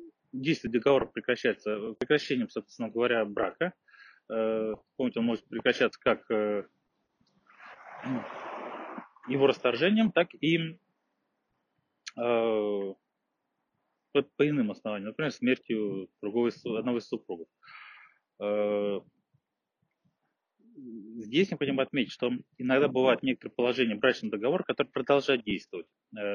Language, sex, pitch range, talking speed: Russian, male, 110-140 Hz, 85 wpm